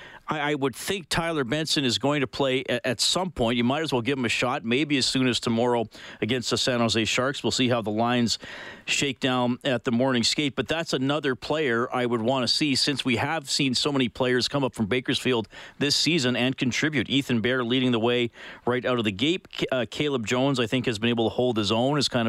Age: 40-59